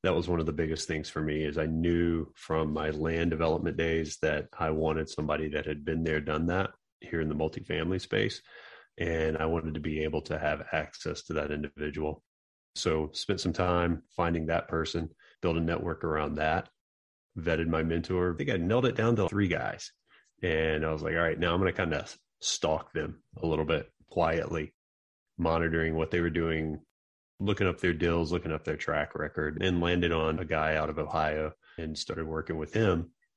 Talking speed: 205 wpm